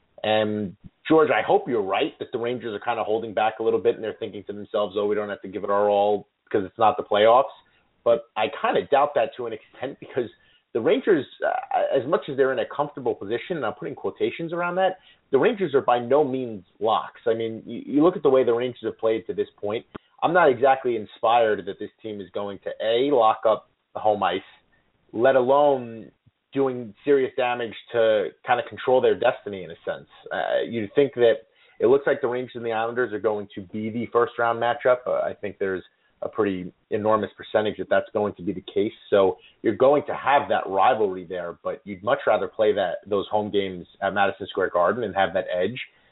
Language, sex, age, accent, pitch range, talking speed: English, male, 30-49, American, 105-145 Hz, 230 wpm